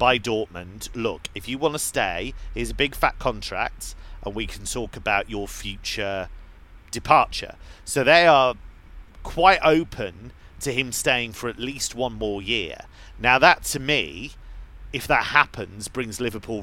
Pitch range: 90-120 Hz